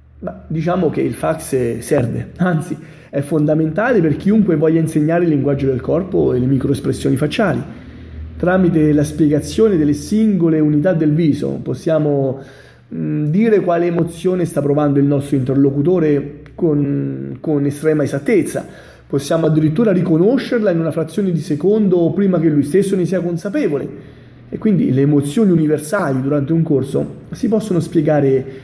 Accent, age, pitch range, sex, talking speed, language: native, 30-49, 140-180 Hz, male, 140 wpm, Italian